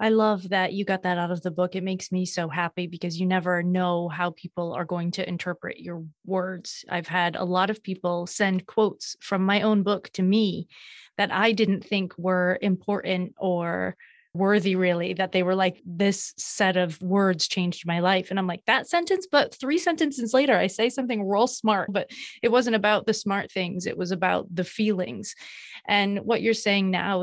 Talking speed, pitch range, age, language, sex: 205 wpm, 180-215 Hz, 20-39, English, female